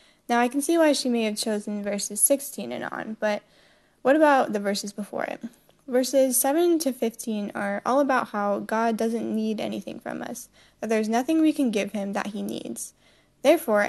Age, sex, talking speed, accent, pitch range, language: 10-29, female, 195 wpm, American, 205-265 Hz, English